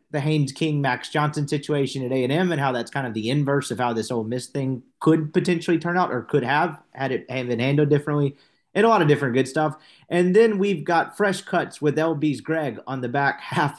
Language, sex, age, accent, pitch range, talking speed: English, male, 30-49, American, 130-170 Hz, 225 wpm